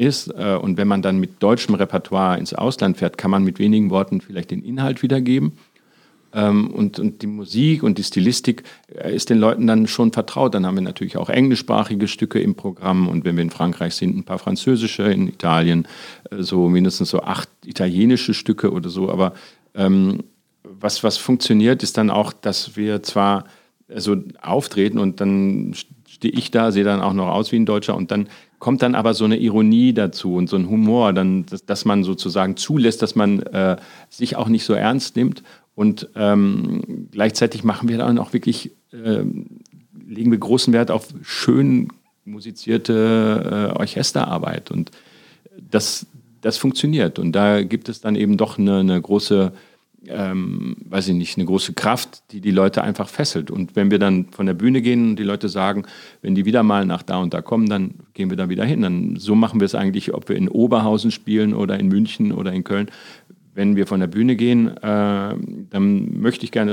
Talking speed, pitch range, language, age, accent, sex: 190 wpm, 95-115 Hz, German, 40-59, German, male